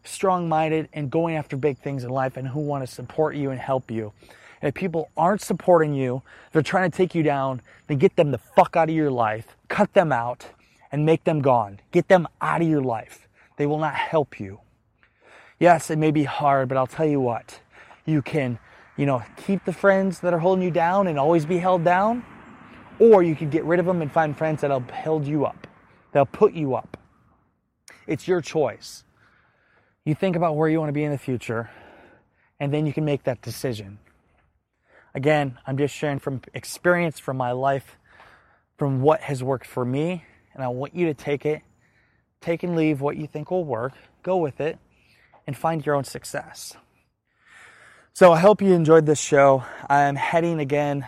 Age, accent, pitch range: 20-39, American, 130-165 Hz